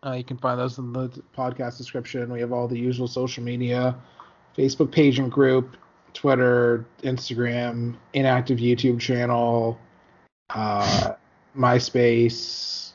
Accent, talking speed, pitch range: American, 125 wpm, 115-135 Hz